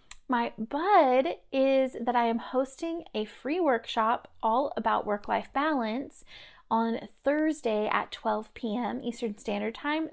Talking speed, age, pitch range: 130 wpm, 30-49, 220-275 Hz